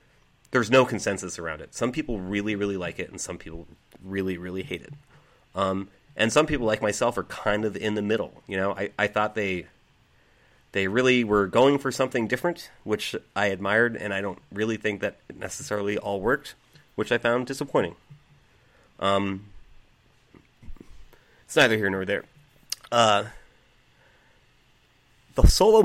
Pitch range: 100-125 Hz